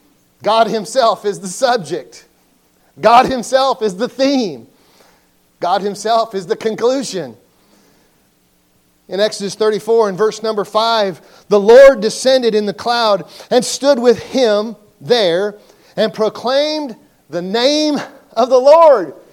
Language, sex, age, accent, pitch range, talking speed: English, male, 40-59, American, 220-280 Hz, 125 wpm